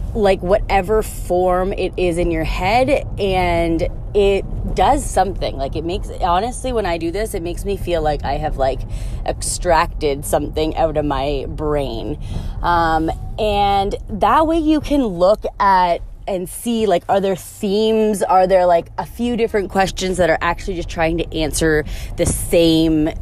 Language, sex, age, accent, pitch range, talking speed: English, female, 20-39, American, 150-195 Hz, 165 wpm